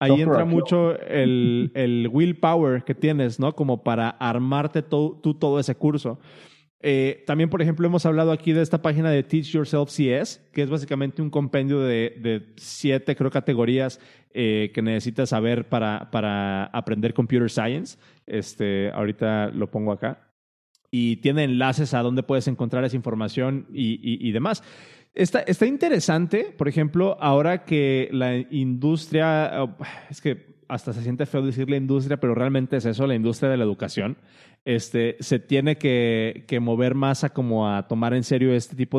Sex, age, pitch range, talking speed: male, 30-49, 120-155 Hz, 165 wpm